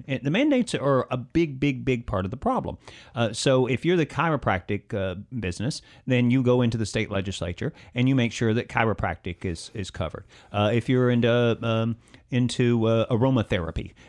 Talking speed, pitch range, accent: 190 wpm, 105-130 Hz, American